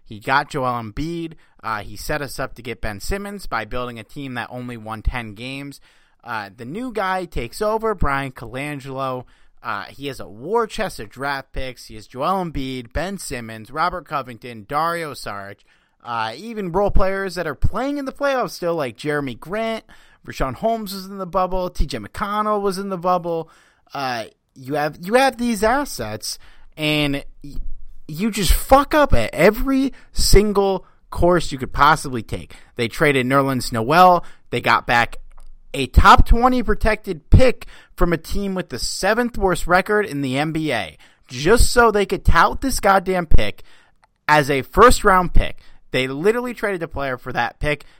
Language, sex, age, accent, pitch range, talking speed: English, male, 30-49, American, 125-195 Hz, 175 wpm